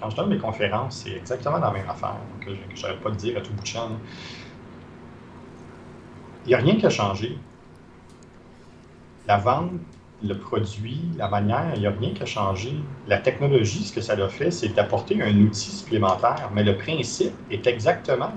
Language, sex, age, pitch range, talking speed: French, male, 40-59, 100-115 Hz, 190 wpm